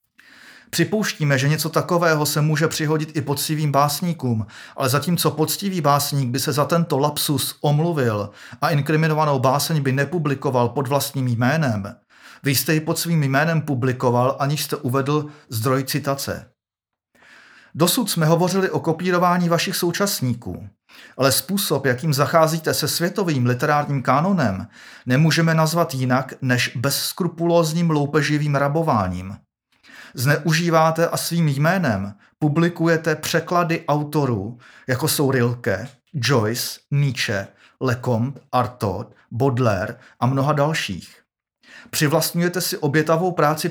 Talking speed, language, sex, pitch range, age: 115 wpm, Czech, male, 130-165 Hz, 40-59